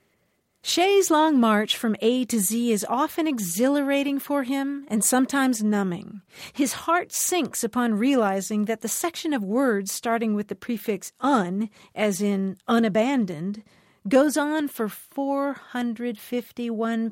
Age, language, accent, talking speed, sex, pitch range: 40-59, English, American, 130 wpm, female, 210-280 Hz